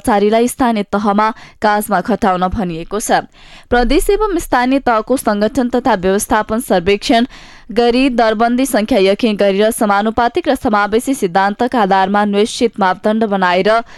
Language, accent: English, Indian